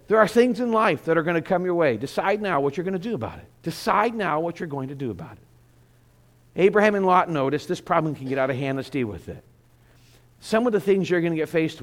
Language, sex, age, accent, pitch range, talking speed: English, male, 50-69, American, 130-170 Hz, 275 wpm